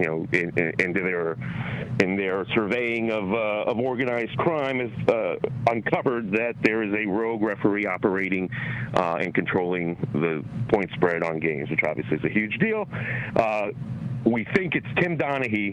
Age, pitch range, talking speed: 40-59, 95-125 Hz, 170 wpm